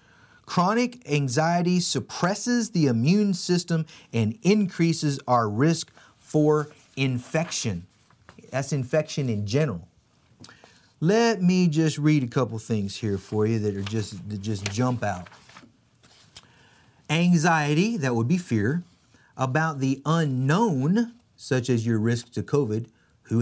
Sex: male